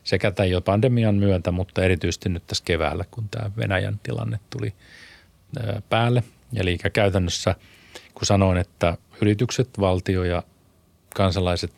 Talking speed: 125 wpm